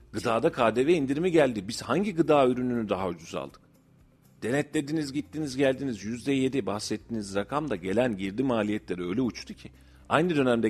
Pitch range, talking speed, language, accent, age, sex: 90-130 Hz, 145 wpm, Turkish, native, 40-59, male